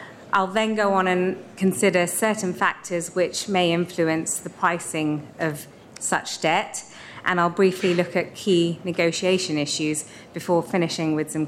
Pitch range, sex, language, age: 170-200 Hz, female, English, 30-49